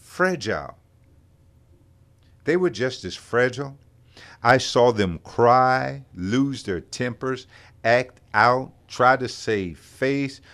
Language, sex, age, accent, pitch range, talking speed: English, male, 50-69, American, 105-140 Hz, 110 wpm